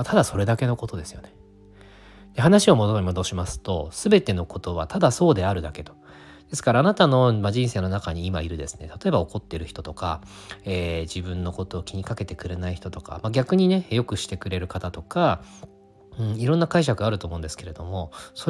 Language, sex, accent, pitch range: Japanese, male, native, 85-110 Hz